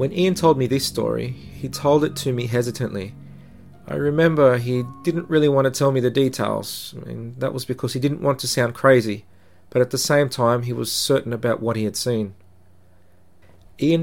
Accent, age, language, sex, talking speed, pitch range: Australian, 40-59, English, male, 200 wpm, 105-135 Hz